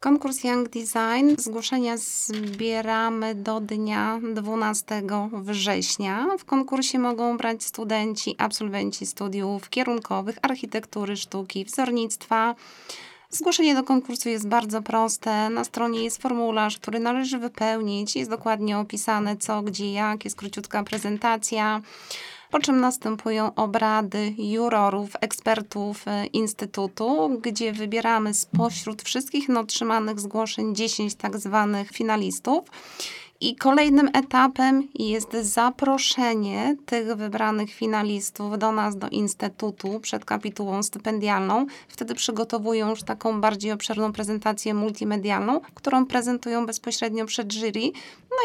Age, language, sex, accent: 20-39, Polish, female, native